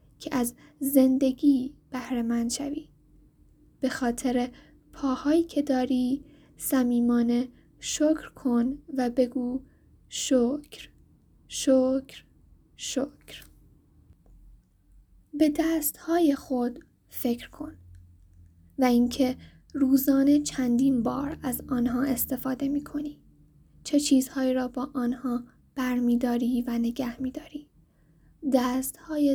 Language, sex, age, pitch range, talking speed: Persian, female, 10-29, 250-285 Hz, 90 wpm